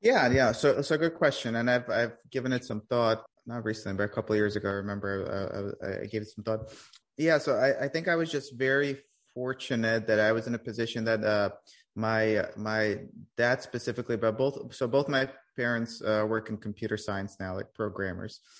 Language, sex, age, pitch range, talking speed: English, male, 30-49, 100-115 Hz, 220 wpm